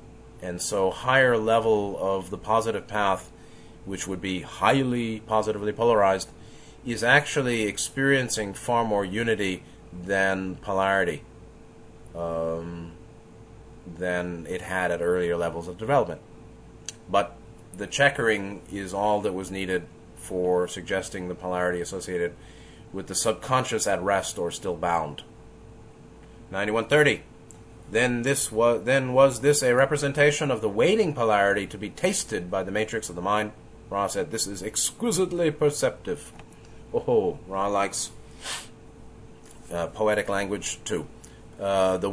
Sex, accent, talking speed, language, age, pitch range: male, American, 130 wpm, English, 30-49, 95-120 Hz